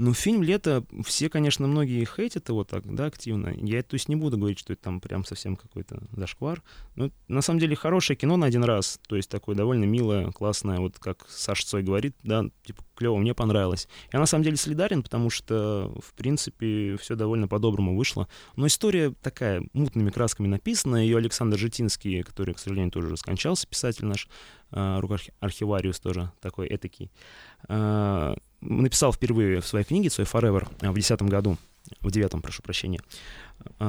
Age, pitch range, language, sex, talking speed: 20-39, 95-130 Hz, Russian, male, 275 wpm